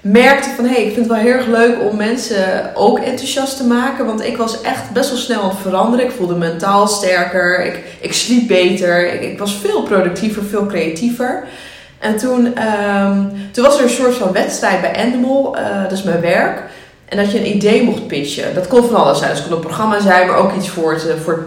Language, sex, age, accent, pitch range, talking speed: English, female, 20-39, Dutch, 175-220 Hz, 220 wpm